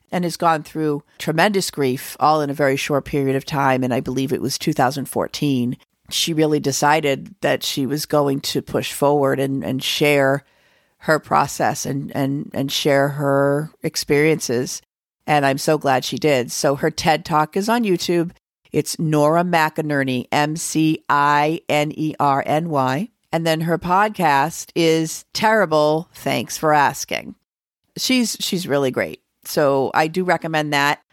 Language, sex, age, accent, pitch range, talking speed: English, female, 40-59, American, 145-185 Hz, 145 wpm